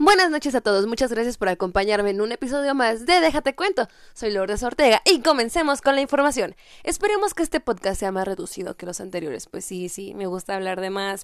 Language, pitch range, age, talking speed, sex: Spanish, 195-270 Hz, 10-29, 220 wpm, female